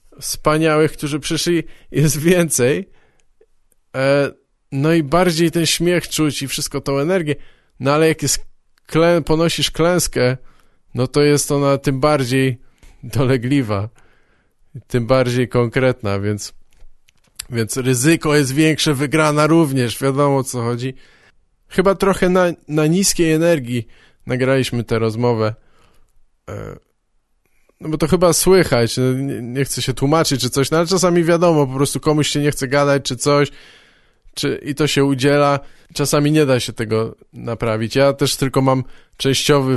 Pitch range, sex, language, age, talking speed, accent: 125-155 Hz, male, Polish, 20-39, 135 wpm, native